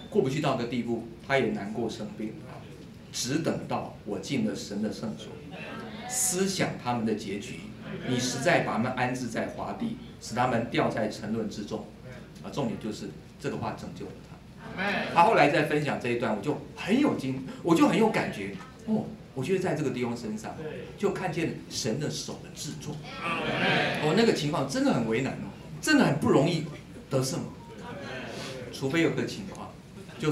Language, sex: Chinese, male